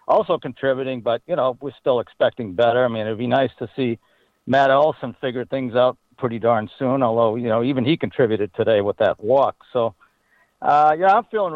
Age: 60-79